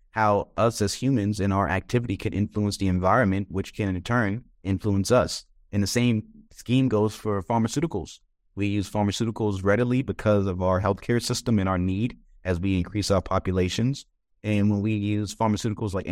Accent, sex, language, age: American, male, English, 20-39